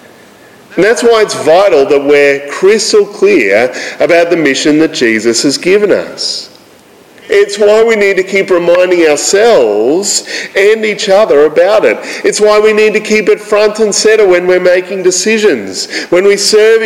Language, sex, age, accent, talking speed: English, male, 40-59, Australian, 165 wpm